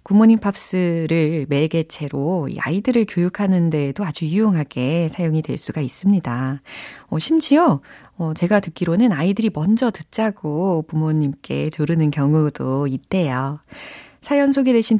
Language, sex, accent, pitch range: Korean, female, native, 155-230 Hz